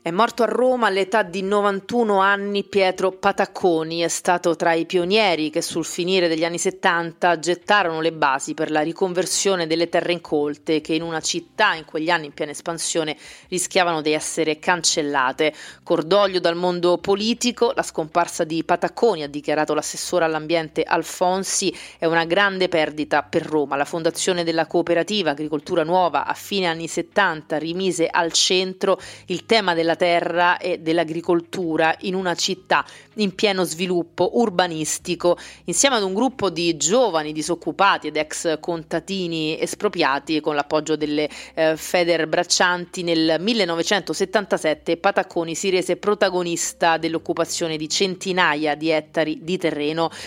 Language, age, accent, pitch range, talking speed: Italian, 30-49, native, 160-185 Hz, 140 wpm